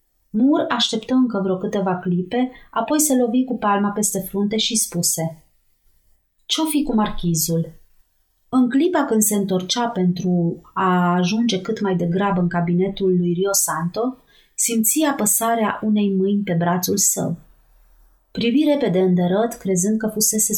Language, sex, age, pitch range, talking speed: Romanian, female, 30-49, 180-230 Hz, 140 wpm